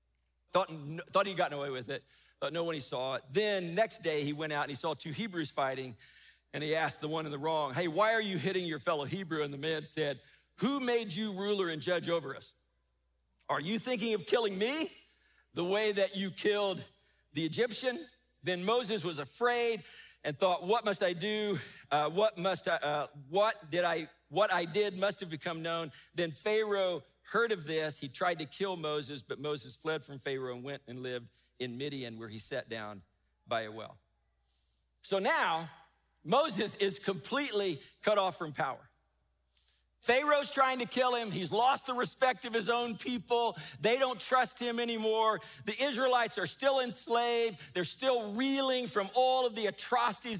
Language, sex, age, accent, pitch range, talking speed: English, male, 50-69, American, 150-230 Hz, 190 wpm